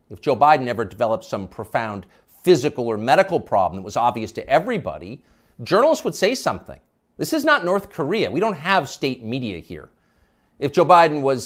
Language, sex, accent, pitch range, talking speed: English, male, American, 125-195 Hz, 185 wpm